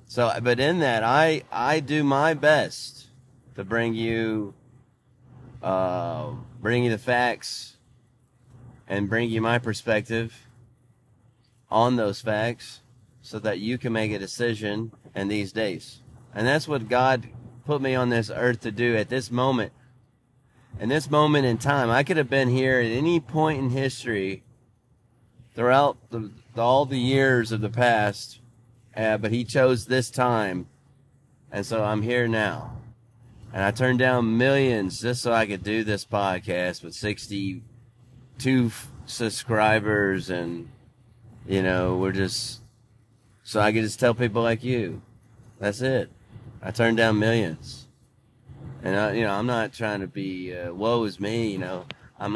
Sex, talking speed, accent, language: male, 150 wpm, American, English